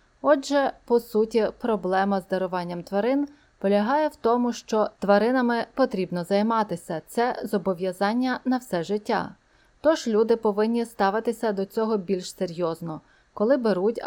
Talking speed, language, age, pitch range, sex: 130 wpm, Ukrainian, 30-49, 190-240 Hz, female